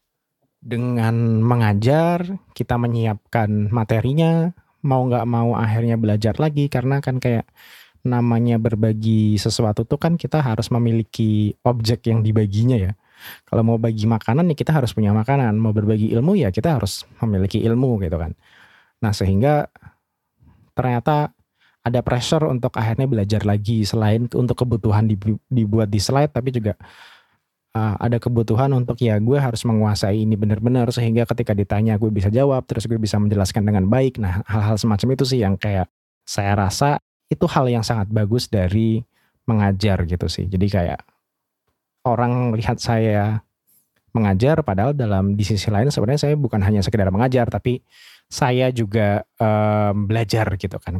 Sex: male